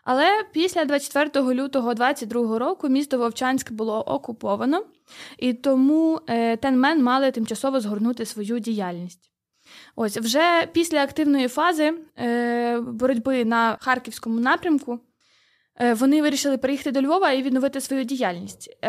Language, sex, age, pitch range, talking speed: Ukrainian, female, 20-39, 235-290 Hz, 115 wpm